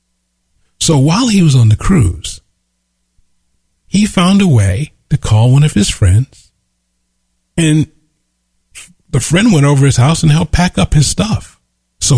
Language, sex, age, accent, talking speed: English, male, 40-59, American, 155 wpm